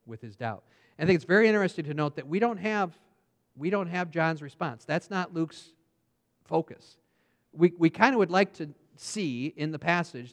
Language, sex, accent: English, male, American